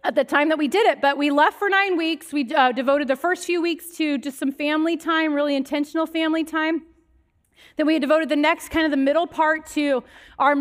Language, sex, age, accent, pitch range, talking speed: English, female, 30-49, American, 245-320 Hz, 240 wpm